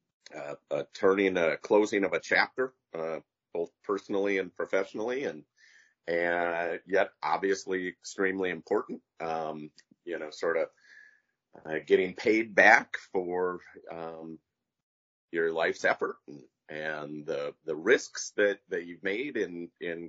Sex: male